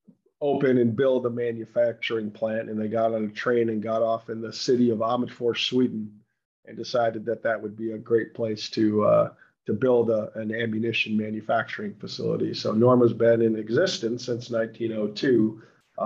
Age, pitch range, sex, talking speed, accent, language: 40-59, 110-120 Hz, male, 175 wpm, American, English